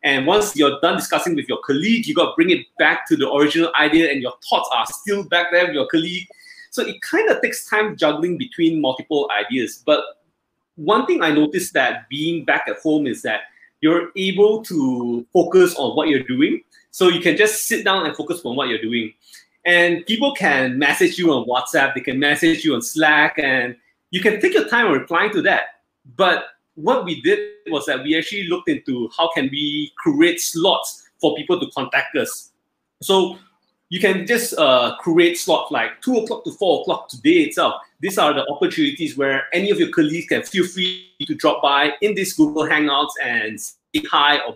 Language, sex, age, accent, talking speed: English, male, 20-39, Malaysian, 200 wpm